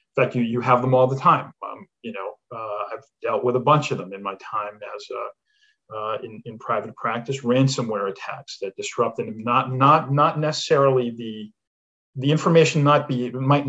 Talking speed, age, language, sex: 195 wpm, 40-59, English, male